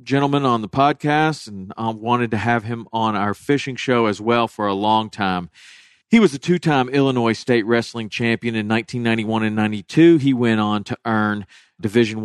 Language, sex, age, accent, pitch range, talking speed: English, male, 40-59, American, 105-130 Hz, 185 wpm